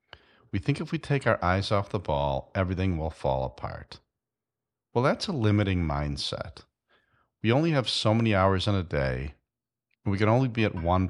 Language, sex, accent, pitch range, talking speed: English, male, American, 85-120 Hz, 190 wpm